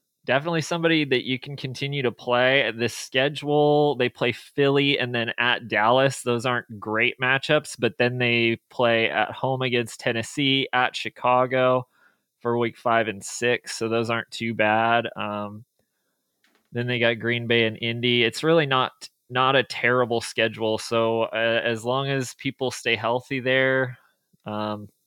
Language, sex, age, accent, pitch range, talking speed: English, male, 20-39, American, 105-125 Hz, 160 wpm